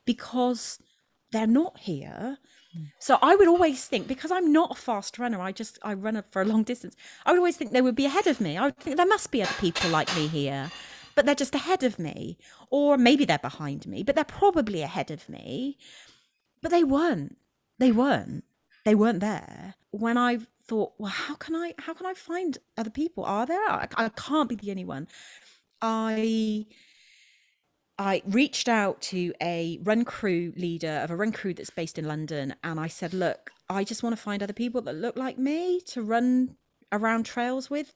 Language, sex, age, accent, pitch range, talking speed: English, female, 30-49, British, 170-245 Hz, 200 wpm